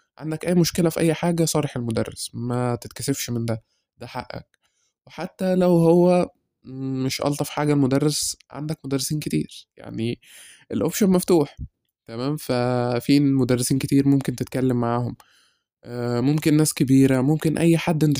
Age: 20-39